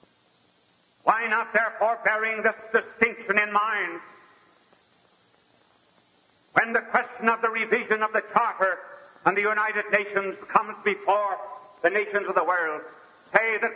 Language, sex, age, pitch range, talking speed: English, male, 60-79, 195-225 Hz, 130 wpm